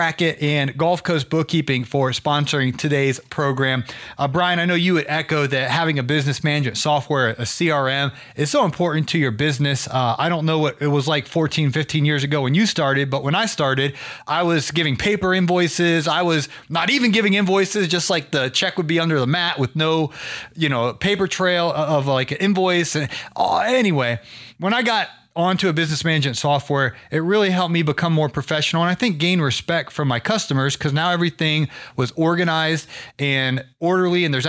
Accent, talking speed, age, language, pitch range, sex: American, 200 wpm, 30-49, English, 140-175 Hz, male